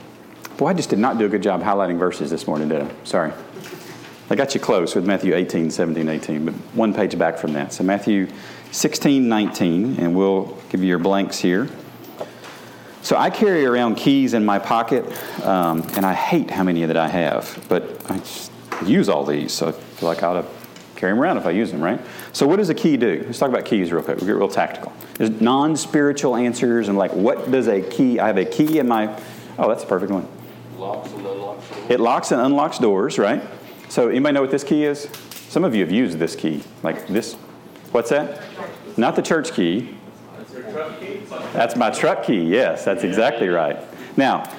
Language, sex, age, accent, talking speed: English, male, 40-59, American, 205 wpm